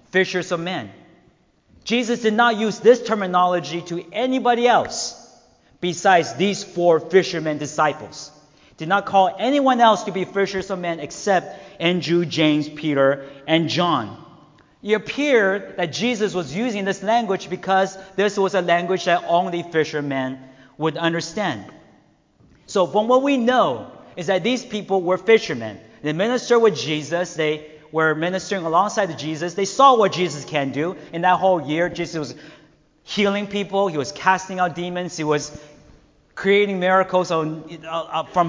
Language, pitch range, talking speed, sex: English, 155-205 Hz, 150 wpm, male